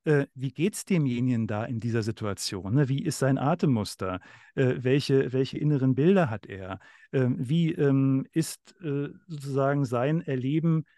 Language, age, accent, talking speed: German, 50-69, German, 125 wpm